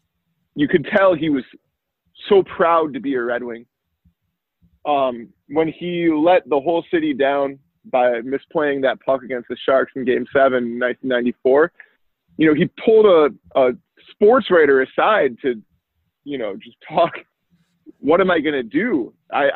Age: 20-39